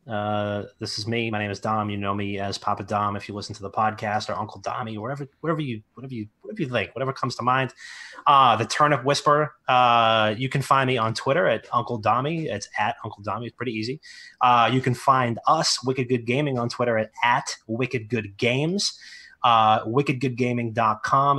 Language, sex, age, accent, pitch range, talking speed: English, male, 30-49, American, 110-135 Hz, 205 wpm